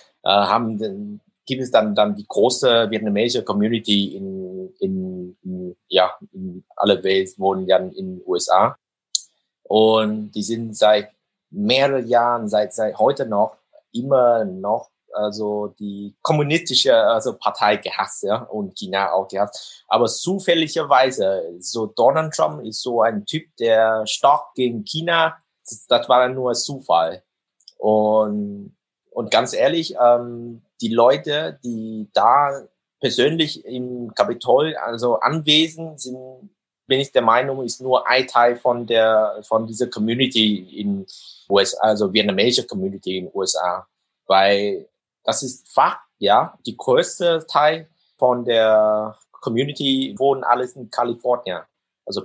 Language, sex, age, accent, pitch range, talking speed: German, male, 20-39, German, 105-155 Hz, 130 wpm